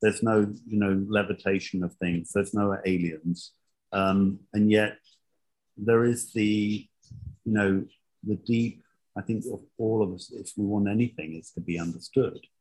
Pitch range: 90-105 Hz